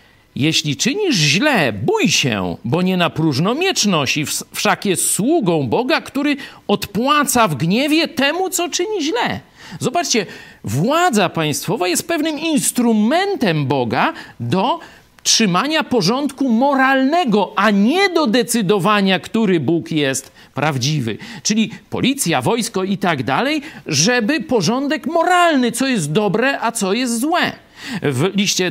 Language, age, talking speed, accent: Polish, 50-69, 125 wpm, native